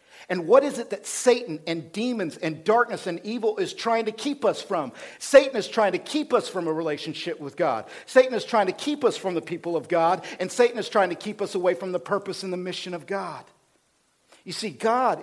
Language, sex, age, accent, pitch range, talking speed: English, male, 50-69, American, 175-235 Hz, 235 wpm